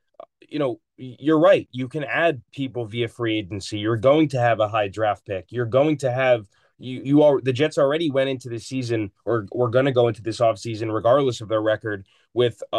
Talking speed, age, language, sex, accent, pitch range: 215 wpm, 20-39, English, male, American, 110-135 Hz